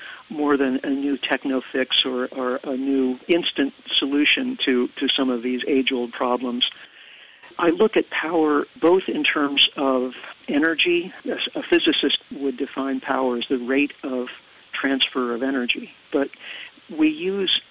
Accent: American